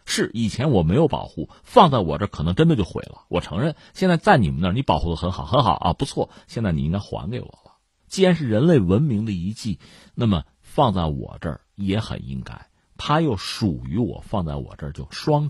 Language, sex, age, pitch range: Chinese, male, 50-69, 80-135 Hz